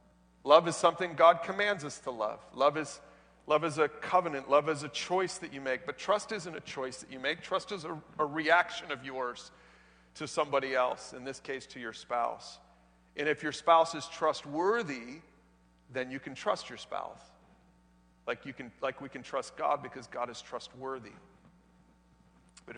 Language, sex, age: English, male, 40-59